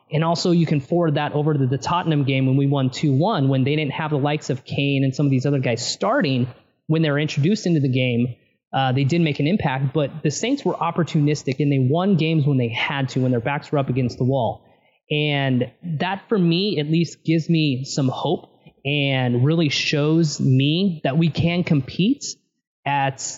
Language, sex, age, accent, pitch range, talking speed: English, male, 20-39, American, 135-160 Hz, 215 wpm